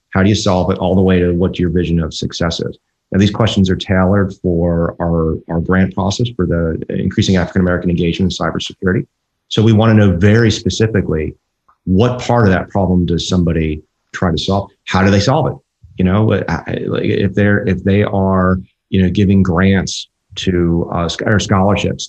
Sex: male